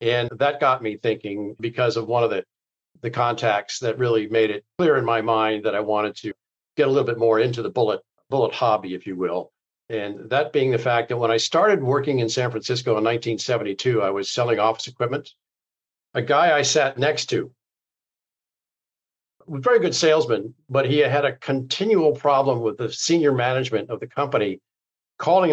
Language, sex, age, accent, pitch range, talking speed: English, male, 50-69, American, 110-140 Hz, 190 wpm